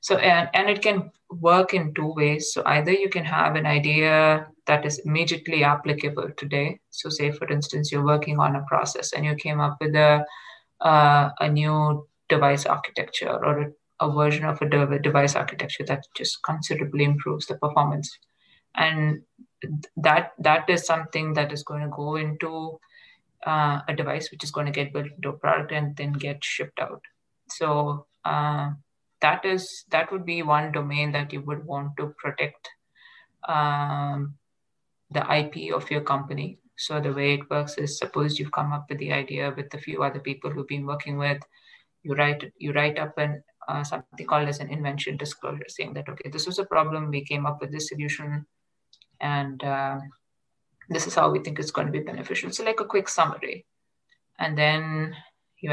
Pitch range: 145-155 Hz